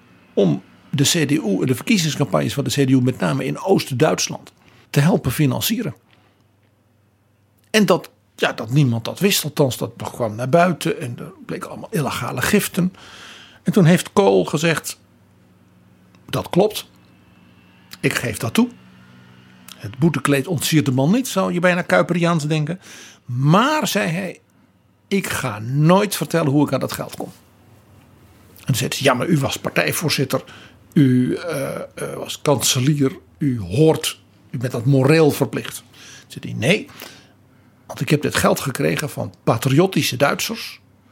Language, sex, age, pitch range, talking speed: Dutch, male, 60-79, 115-165 Hz, 145 wpm